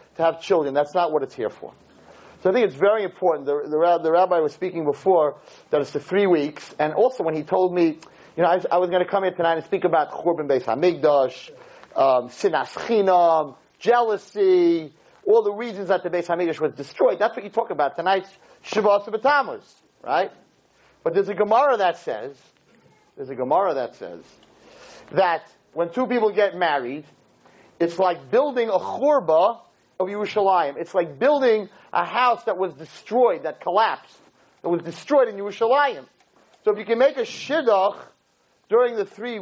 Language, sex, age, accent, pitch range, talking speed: English, male, 40-59, American, 170-240 Hz, 185 wpm